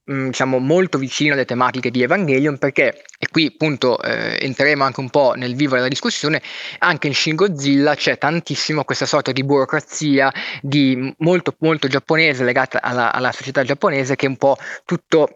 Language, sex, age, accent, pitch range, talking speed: Italian, male, 20-39, native, 130-160 Hz, 170 wpm